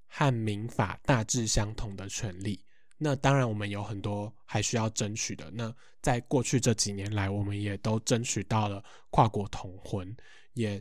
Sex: male